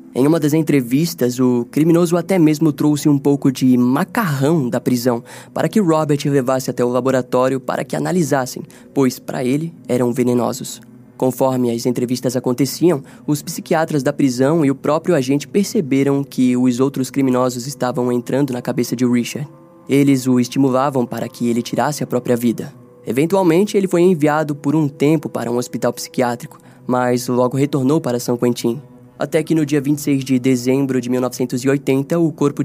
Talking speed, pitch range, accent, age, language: 165 wpm, 125-150 Hz, Brazilian, 10-29, Portuguese